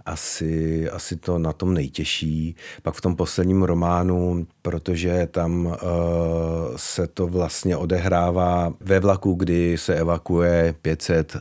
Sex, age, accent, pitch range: male, 40-59, native, 80-90 Hz